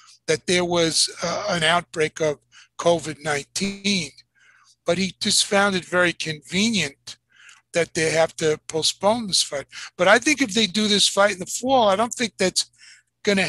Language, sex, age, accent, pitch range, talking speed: English, male, 60-79, American, 160-205 Hz, 170 wpm